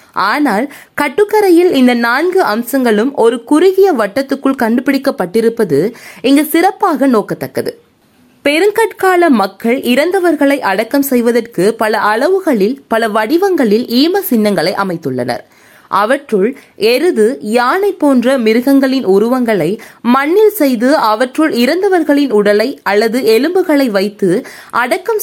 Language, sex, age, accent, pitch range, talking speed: Tamil, female, 20-39, native, 220-320 Hz, 95 wpm